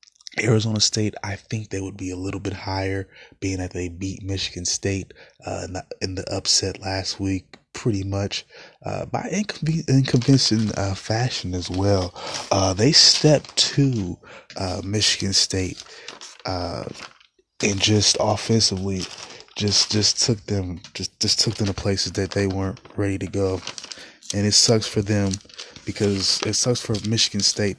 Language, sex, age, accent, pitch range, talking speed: English, male, 20-39, American, 95-110 Hz, 160 wpm